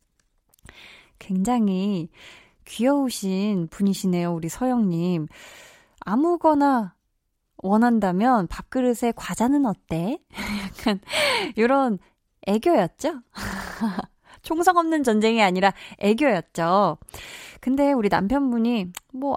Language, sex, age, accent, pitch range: Korean, female, 20-39, native, 185-255 Hz